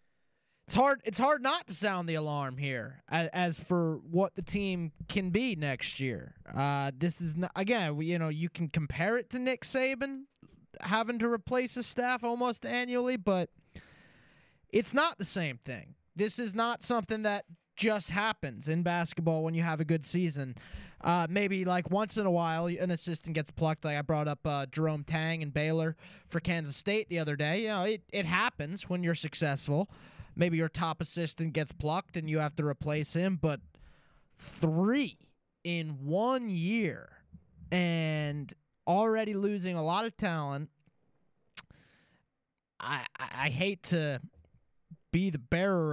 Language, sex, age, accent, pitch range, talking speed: English, male, 20-39, American, 150-205 Hz, 170 wpm